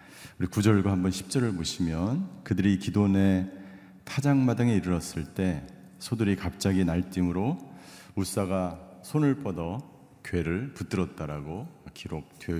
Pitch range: 90-110 Hz